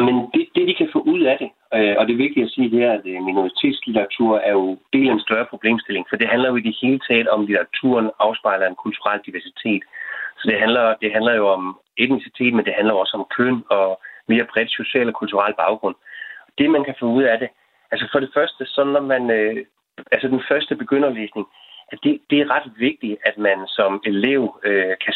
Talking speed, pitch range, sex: 215 wpm, 100-135 Hz, male